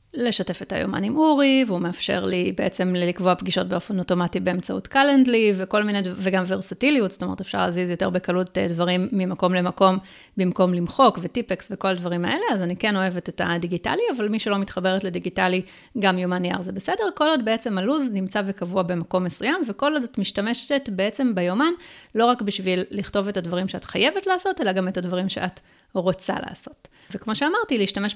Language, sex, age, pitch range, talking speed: Hebrew, female, 30-49, 185-235 Hz, 180 wpm